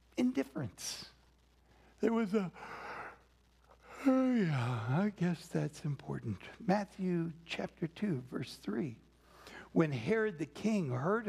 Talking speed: 105 wpm